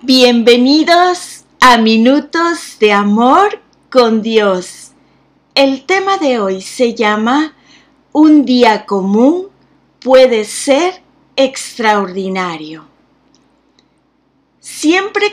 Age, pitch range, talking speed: 40-59, 210-285 Hz, 80 wpm